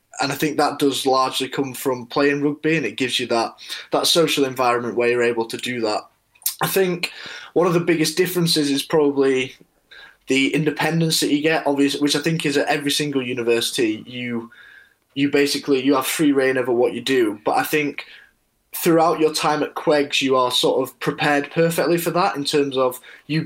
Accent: British